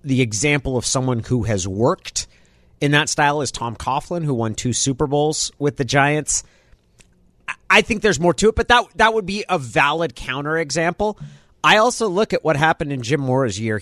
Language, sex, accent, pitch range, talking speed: English, male, American, 105-145 Hz, 200 wpm